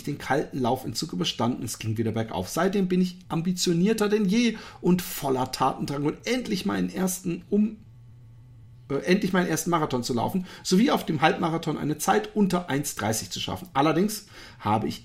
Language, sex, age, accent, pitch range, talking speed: German, male, 40-59, German, 125-180 Hz, 150 wpm